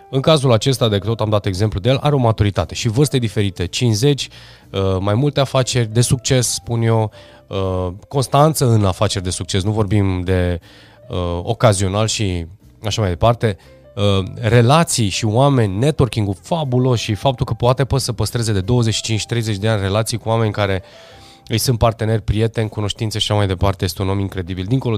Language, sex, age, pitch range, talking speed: Romanian, male, 20-39, 95-120 Hz, 170 wpm